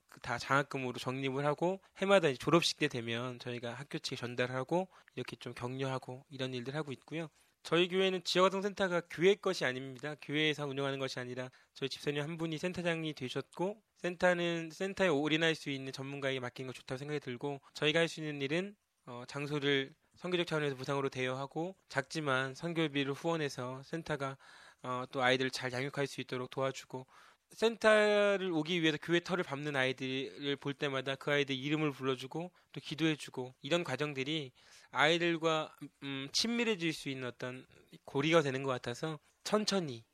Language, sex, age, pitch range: Korean, male, 20-39, 130-165 Hz